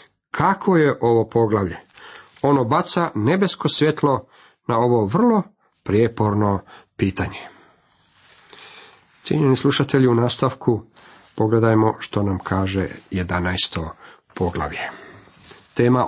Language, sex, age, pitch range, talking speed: Croatian, male, 40-59, 105-130 Hz, 90 wpm